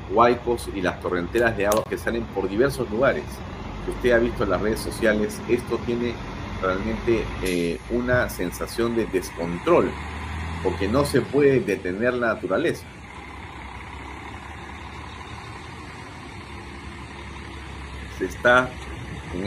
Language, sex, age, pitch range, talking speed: Spanish, male, 50-69, 85-115 Hz, 115 wpm